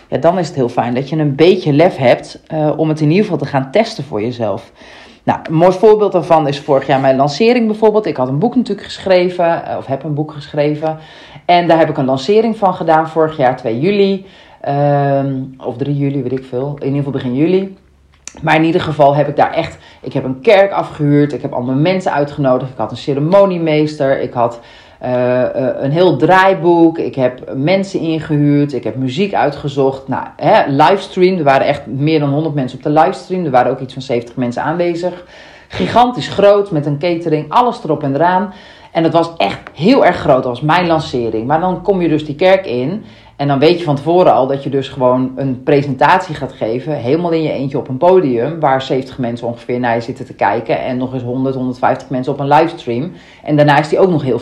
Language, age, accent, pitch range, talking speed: Dutch, 40-59, Dutch, 130-170 Hz, 220 wpm